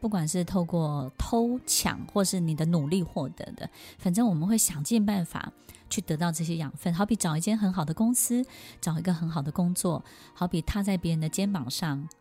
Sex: female